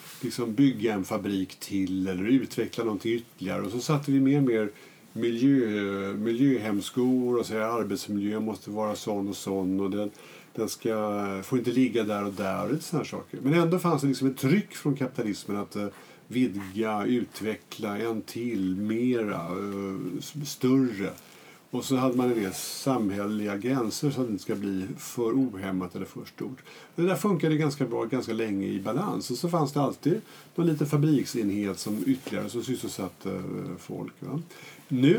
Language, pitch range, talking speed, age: Swedish, 100-150 Hz, 165 wpm, 50-69